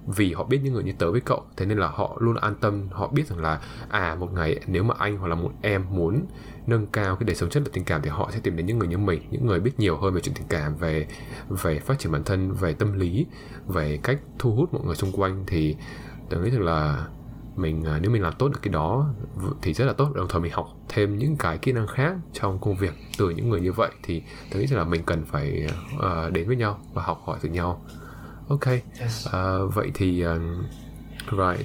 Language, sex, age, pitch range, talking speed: English, male, 20-39, 85-115 Hz, 250 wpm